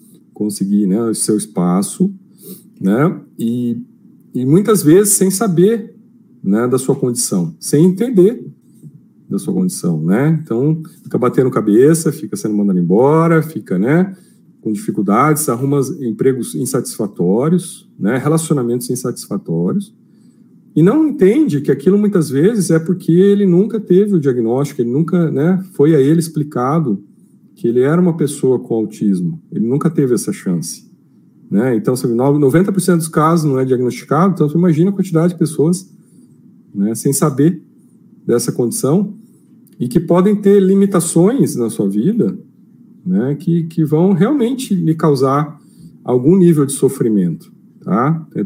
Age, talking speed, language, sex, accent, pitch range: 40-59, 140 wpm, Portuguese, male, Brazilian, 135-195 Hz